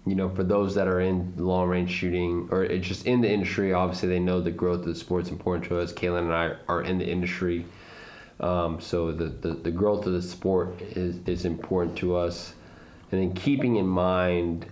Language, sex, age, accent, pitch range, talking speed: English, male, 20-39, American, 85-90 Hz, 210 wpm